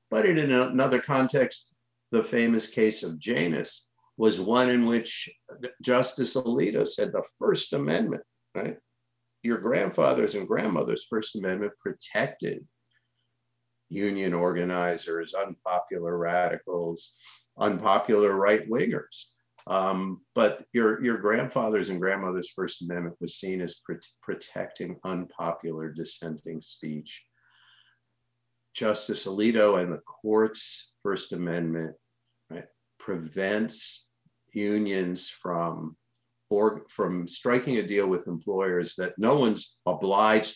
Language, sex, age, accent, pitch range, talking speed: English, male, 50-69, American, 80-110 Hz, 100 wpm